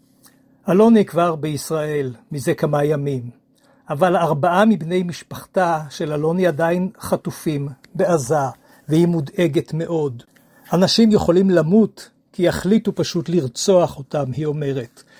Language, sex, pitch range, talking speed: Hebrew, male, 150-185 Hz, 110 wpm